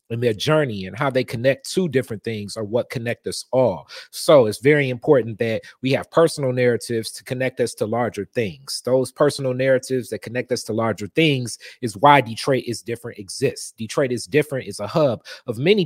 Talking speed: 200 wpm